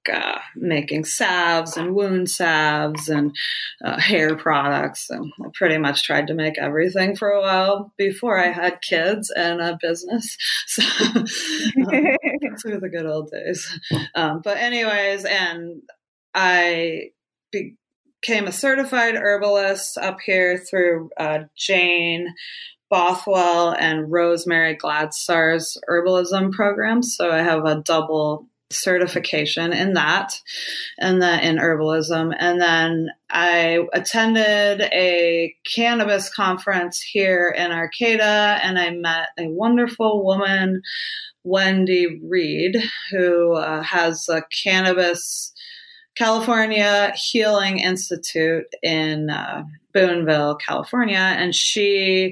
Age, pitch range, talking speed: 20-39, 165-205 Hz, 115 wpm